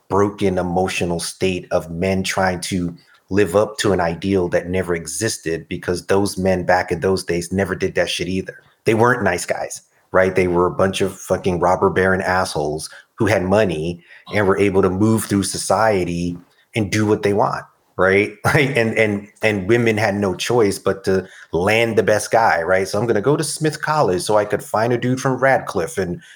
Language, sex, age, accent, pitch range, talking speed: English, male, 30-49, American, 90-110 Hz, 200 wpm